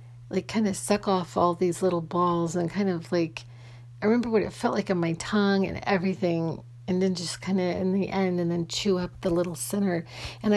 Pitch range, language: 120-190 Hz, English